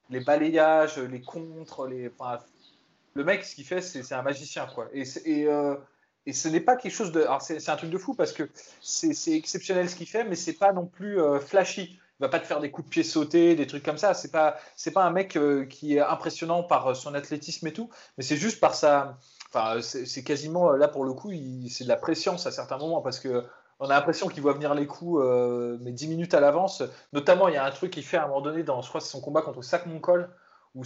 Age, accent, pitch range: 30-49, French, 145-185 Hz